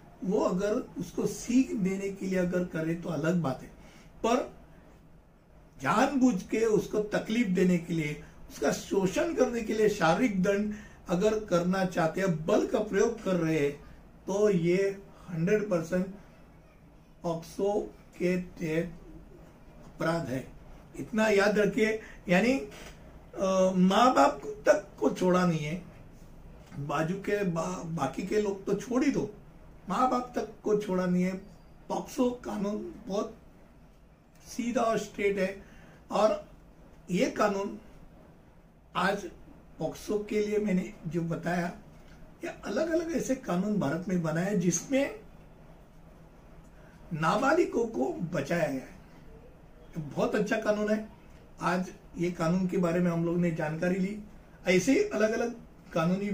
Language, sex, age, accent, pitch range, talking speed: Hindi, male, 60-79, native, 170-210 Hz, 130 wpm